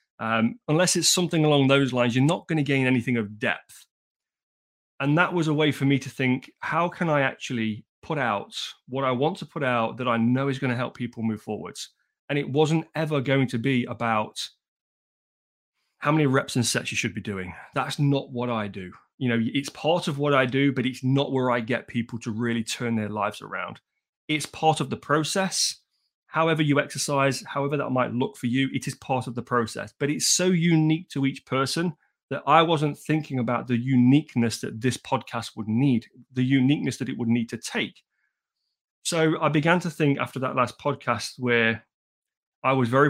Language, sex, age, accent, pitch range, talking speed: English, male, 30-49, British, 120-145 Hz, 205 wpm